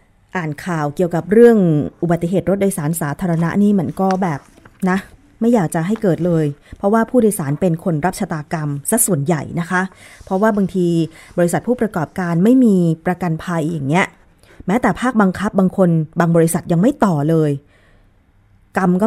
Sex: female